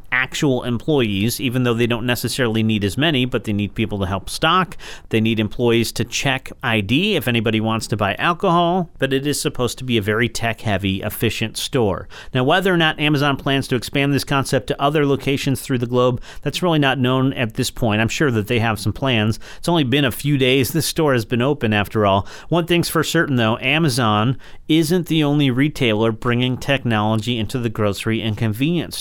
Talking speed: 205 wpm